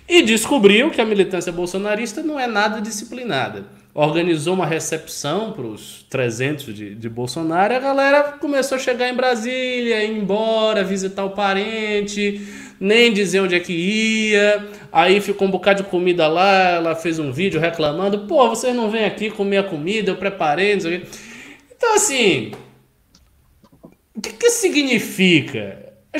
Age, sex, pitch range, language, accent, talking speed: 20-39, male, 150-220 Hz, Portuguese, Brazilian, 155 wpm